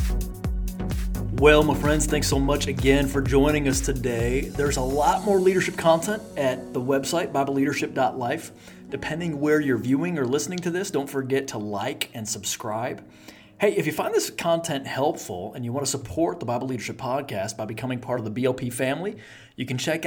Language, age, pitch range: English, 30-49, 120-145 Hz